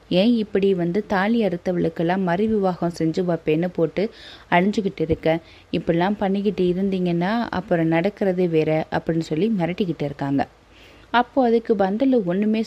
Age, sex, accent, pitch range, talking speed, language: 20-39, female, native, 170-220 Hz, 125 wpm, Tamil